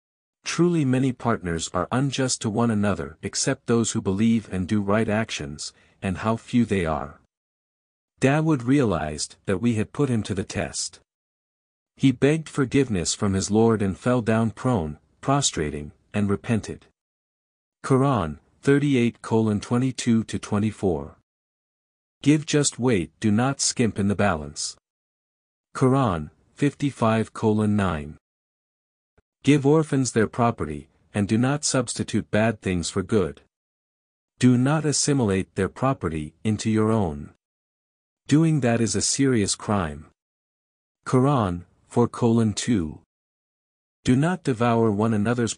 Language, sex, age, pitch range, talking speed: English, male, 50-69, 90-125 Hz, 120 wpm